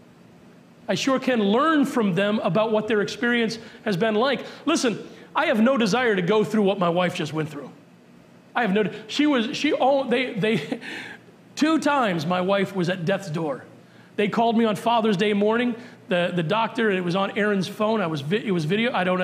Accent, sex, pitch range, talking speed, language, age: American, male, 180-220 Hz, 205 wpm, English, 40-59